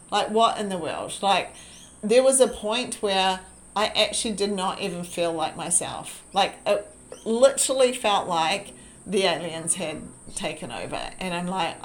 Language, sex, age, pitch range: English, female, 40-59, 180-210 Hz